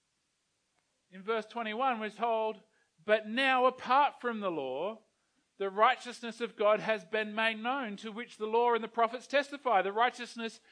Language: English